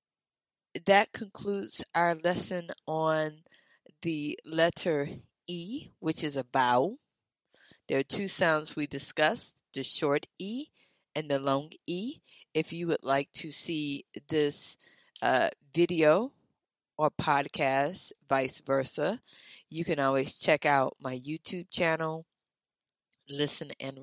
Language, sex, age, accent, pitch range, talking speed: English, female, 20-39, American, 140-175 Hz, 120 wpm